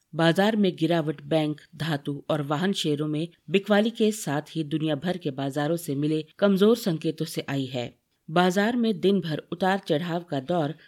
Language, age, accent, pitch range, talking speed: Hindi, 50-69, native, 155-210 Hz, 175 wpm